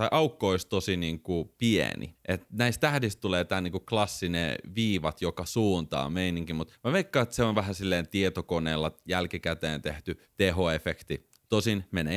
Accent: native